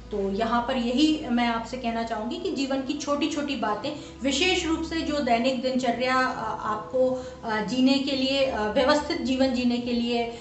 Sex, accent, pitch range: female, native, 220-265 Hz